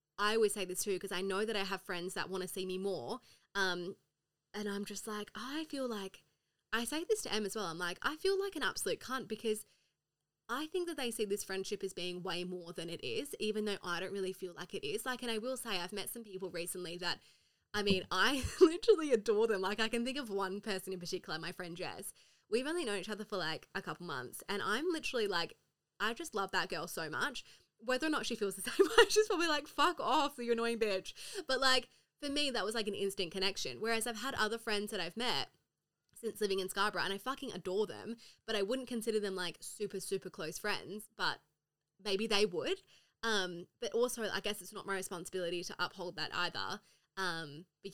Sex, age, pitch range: female, 20-39, 185-240 Hz